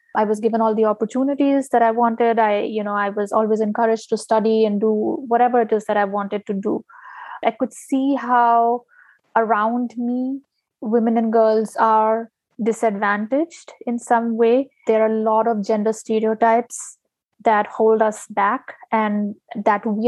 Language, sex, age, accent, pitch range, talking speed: English, female, 20-39, Indian, 215-245 Hz, 165 wpm